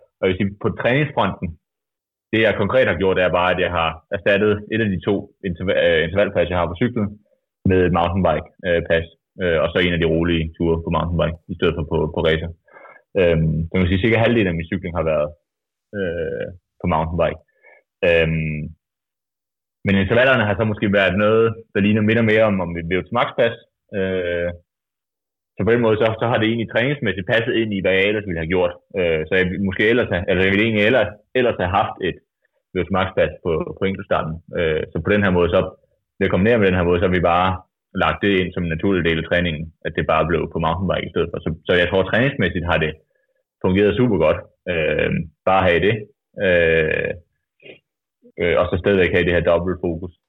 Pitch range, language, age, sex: 85-105 Hz, Danish, 30-49, male